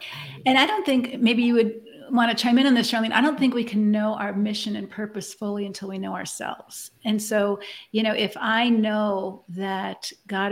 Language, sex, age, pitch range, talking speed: English, female, 50-69, 210-245 Hz, 215 wpm